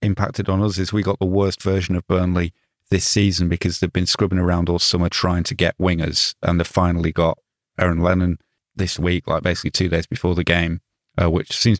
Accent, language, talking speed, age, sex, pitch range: British, English, 215 wpm, 30-49, male, 85-95 Hz